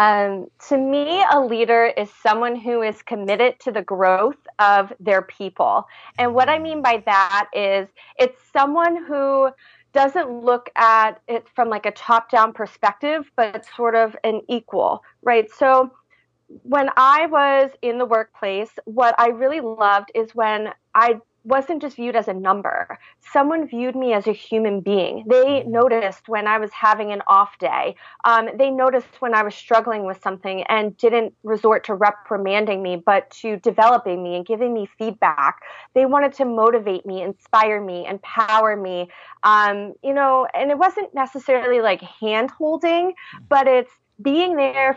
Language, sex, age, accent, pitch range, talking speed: English, female, 30-49, American, 210-265 Hz, 165 wpm